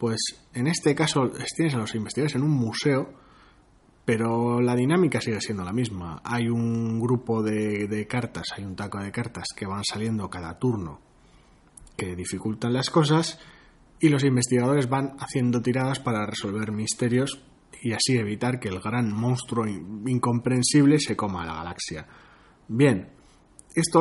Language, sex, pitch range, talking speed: Spanish, male, 105-135 Hz, 150 wpm